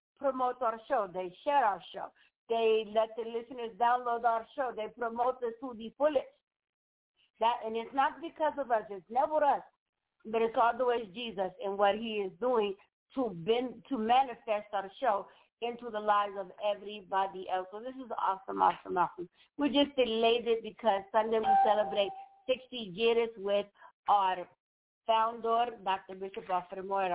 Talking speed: 165 wpm